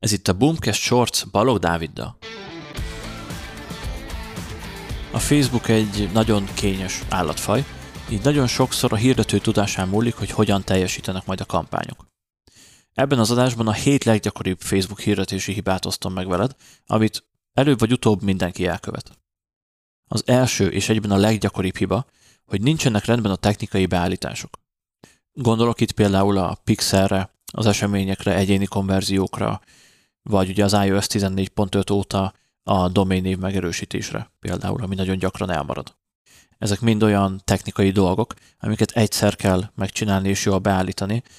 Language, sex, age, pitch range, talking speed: Hungarian, male, 30-49, 95-110 Hz, 135 wpm